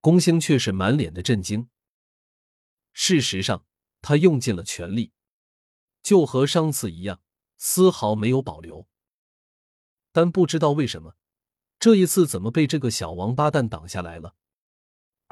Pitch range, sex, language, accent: 95-150 Hz, male, Chinese, native